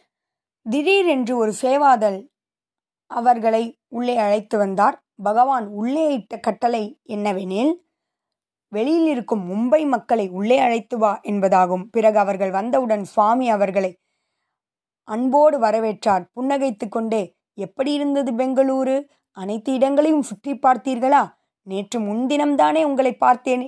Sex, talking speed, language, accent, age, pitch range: female, 105 wpm, Tamil, native, 20-39, 200-260 Hz